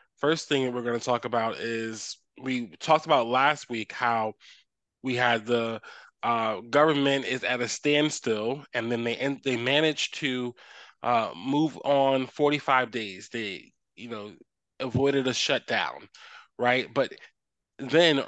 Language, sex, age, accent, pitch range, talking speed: English, male, 20-39, American, 120-140 Hz, 145 wpm